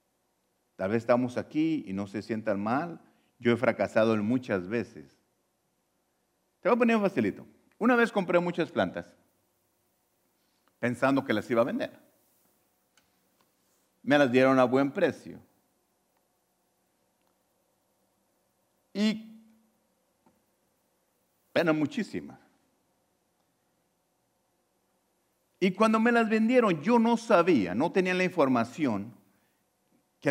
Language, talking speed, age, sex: English, 105 wpm, 50-69, male